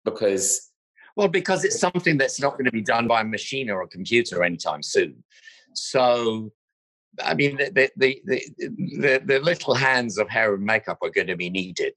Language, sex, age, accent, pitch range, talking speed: English, male, 50-69, British, 105-175 Hz, 190 wpm